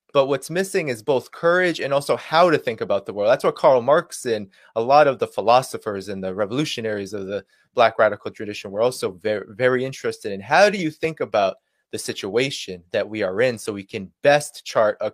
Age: 20-39